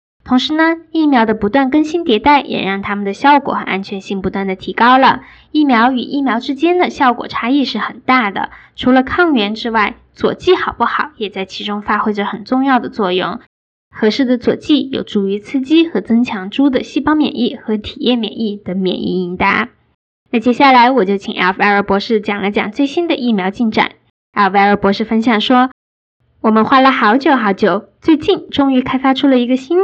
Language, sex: Chinese, female